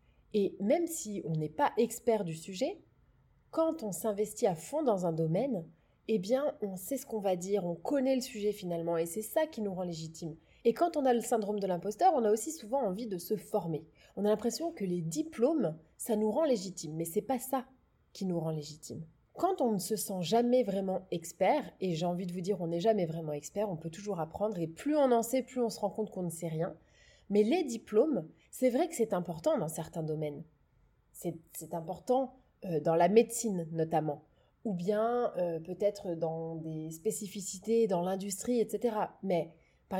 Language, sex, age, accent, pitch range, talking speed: French, female, 20-39, French, 170-230 Hz, 210 wpm